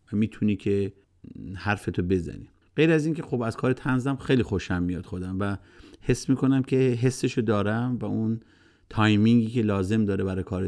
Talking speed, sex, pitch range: 170 wpm, male, 100-135 Hz